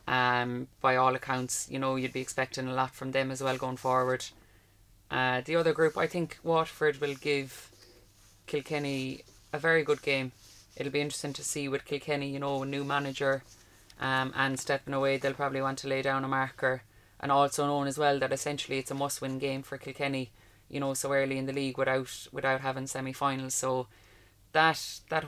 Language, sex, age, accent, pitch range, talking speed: English, female, 20-39, Irish, 125-140 Hz, 195 wpm